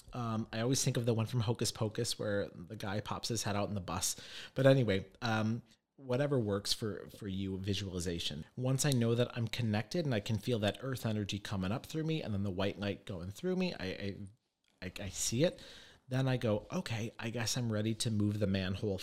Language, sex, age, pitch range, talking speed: English, male, 40-59, 100-125 Hz, 225 wpm